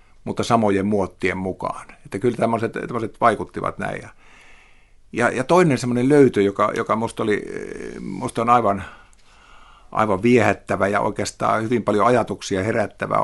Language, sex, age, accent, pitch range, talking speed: Finnish, male, 50-69, native, 95-115 Hz, 125 wpm